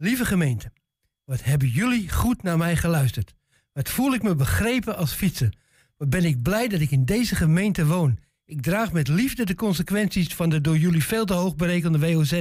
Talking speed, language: 200 wpm, Dutch